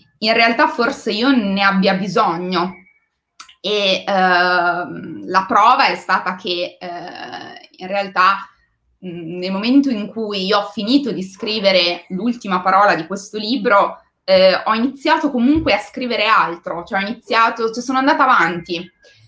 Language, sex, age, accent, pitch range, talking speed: Italian, female, 20-39, native, 180-225 Hz, 125 wpm